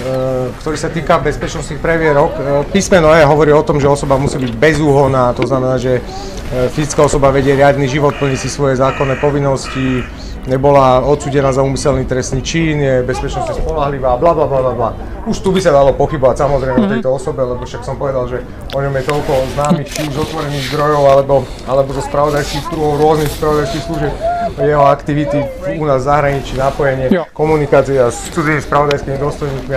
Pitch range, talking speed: 135-165 Hz, 165 wpm